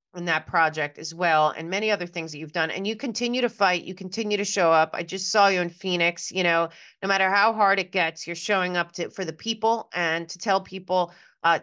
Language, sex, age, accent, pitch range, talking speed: English, female, 30-49, American, 165-205 Hz, 250 wpm